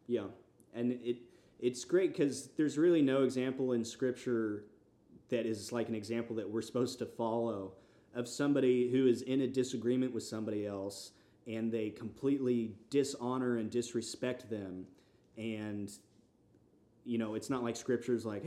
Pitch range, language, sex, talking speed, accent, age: 115-140 Hz, English, male, 155 wpm, American, 30-49